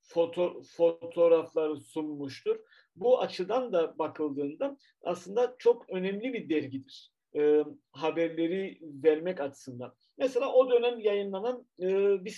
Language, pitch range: Turkish, 150-205 Hz